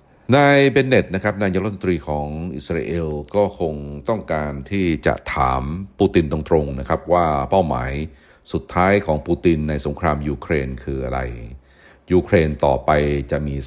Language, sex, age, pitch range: Thai, male, 60-79, 70-80 Hz